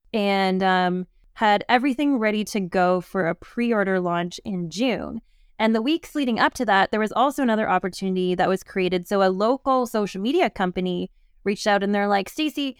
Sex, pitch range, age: female, 185-230 Hz, 20-39